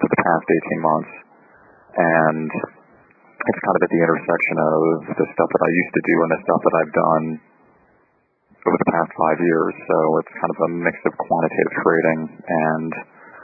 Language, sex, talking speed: English, male, 185 wpm